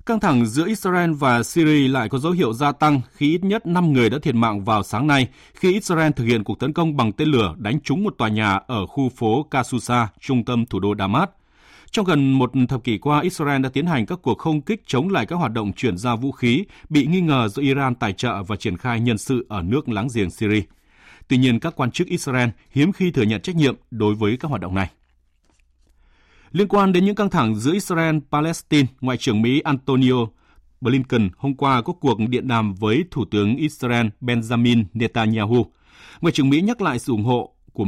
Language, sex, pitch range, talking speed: Vietnamese, male, 110-150 Hz, 220 wpm